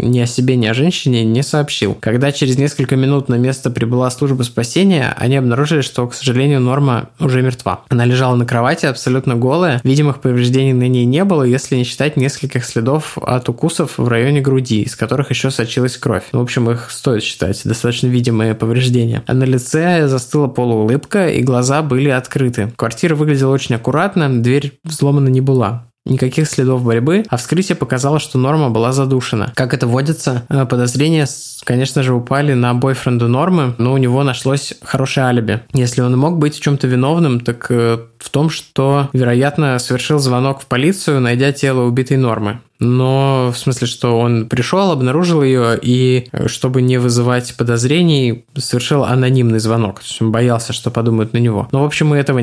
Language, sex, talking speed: Russian, male, 175 wpm